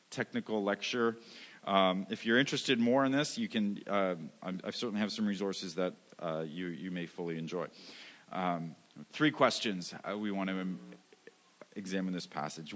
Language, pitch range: English, 100-155 Hz